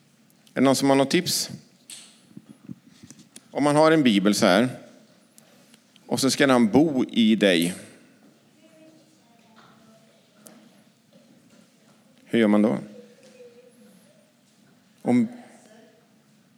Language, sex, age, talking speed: English, male, 50-69, 90 wpm